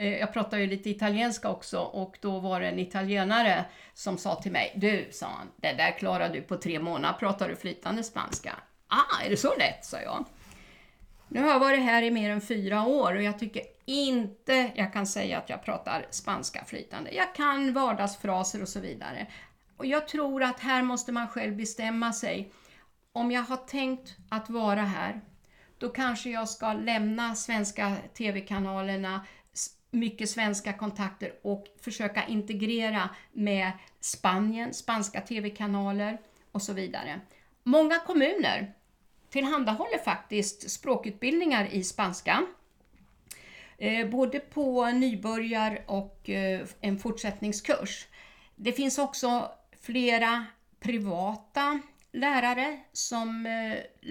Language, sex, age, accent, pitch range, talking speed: Swedish, female, 50-69, native, 200-245 Hz, 140 wpm